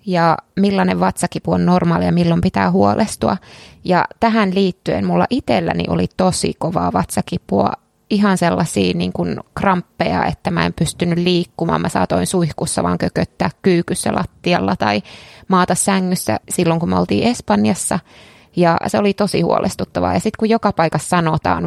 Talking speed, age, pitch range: 150 wpm, 20-39, 145-195 Hz